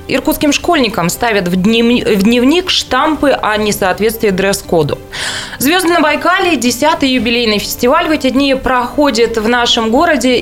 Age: 20-39